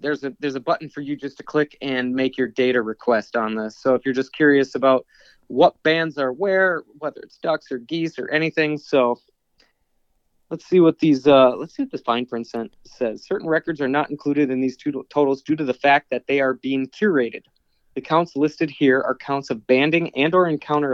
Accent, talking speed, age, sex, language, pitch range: American, 215 wpm, 20-39, male, English, 130-165 Hz